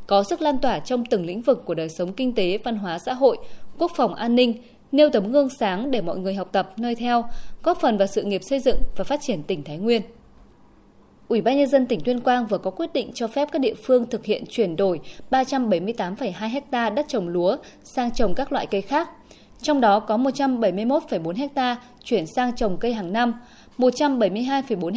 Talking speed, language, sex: 210 wpm, Vietnamese, female